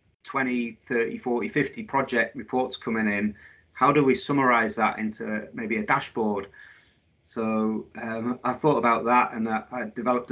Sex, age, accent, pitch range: male, 30-49, British, 110-135 Hz